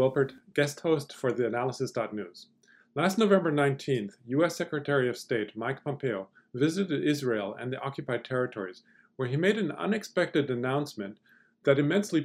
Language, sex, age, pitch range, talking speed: English, male, 40-59, 125-155 Hz, 135 wpm